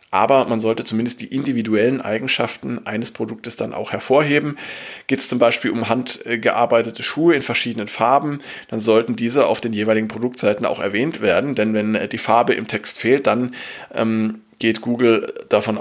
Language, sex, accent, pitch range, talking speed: German, male, German, 110-130 Hz, 165 wpm